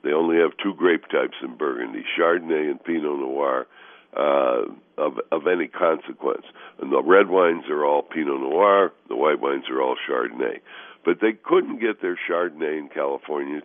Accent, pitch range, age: American, 300-410 Hz, 60-79